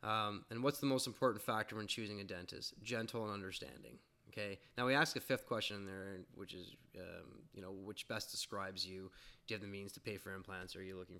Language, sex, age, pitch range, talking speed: English, male, 20-39, 95-125 Hz, 240 wpm